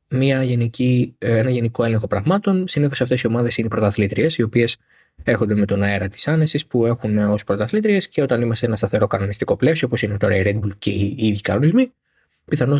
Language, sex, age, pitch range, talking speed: Greek, male, 20-39, 105-160 Hz, 190 wpm